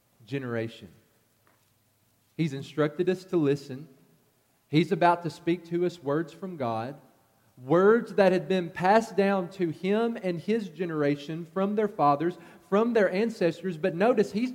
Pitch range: 145-195 Hz